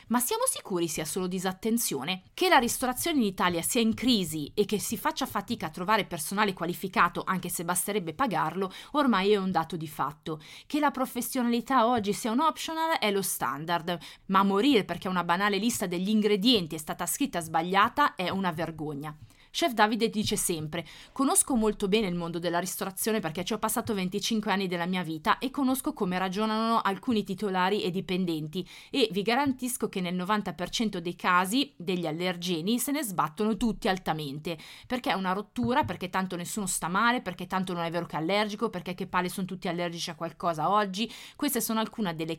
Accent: native